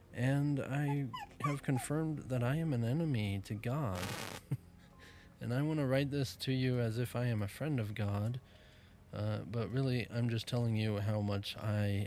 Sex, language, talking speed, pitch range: male, English, 185 wpm, 100-115 Hz